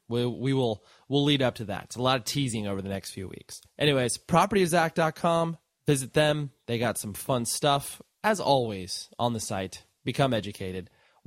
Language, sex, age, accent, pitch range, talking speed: English, male, 20-39, American, 110-145 Hz, 180 wpm